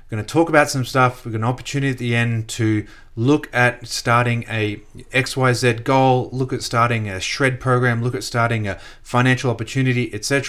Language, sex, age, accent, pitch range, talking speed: English, male, 30-49, Australian, 110-135 Hz, 190 wpm